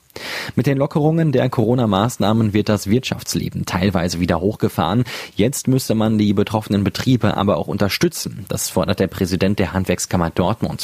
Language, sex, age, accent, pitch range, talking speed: German, male, 30-49, German, 95-115 Hz, 150 wpm